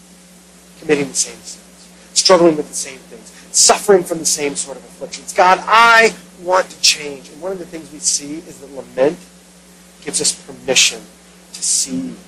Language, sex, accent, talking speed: English, male, American, 175 wpm